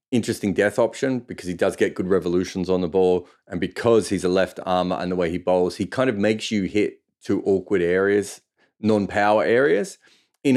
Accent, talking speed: Australian, 200 wpm